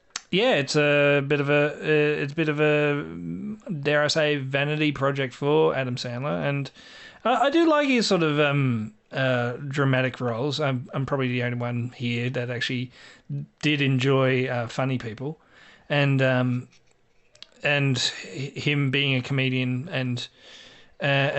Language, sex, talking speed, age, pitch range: English, male, 150 wpm, 30-49, 125-150 Hz